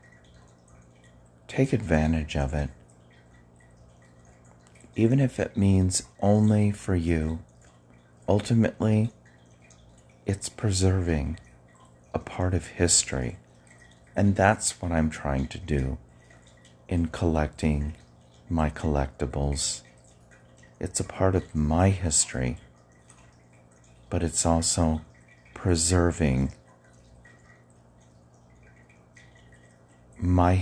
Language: English